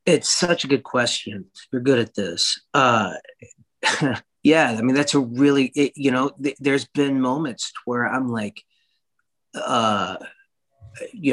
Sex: male